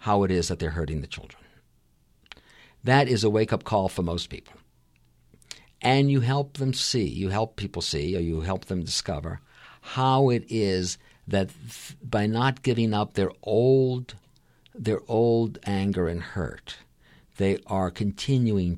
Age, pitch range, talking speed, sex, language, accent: 50-69, 85-110 Hz, 155 wpm, male, English, American